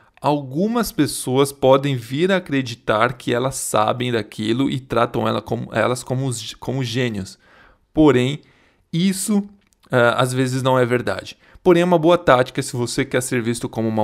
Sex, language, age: male, Portuguese, 20-39